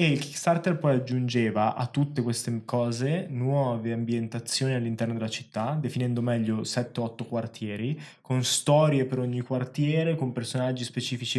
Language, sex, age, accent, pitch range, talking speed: Italian, male, 20-39, native, 115-135 Hz, 135 wpm